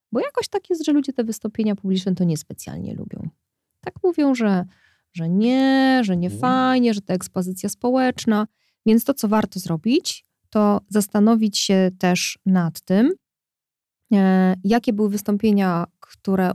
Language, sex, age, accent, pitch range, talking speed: Polish, female, 20-39, native, 185-230 Hz, 140 wpm